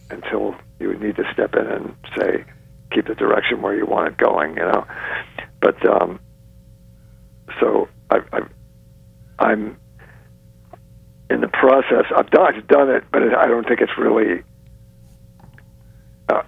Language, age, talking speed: English, 60-79, 140 wpm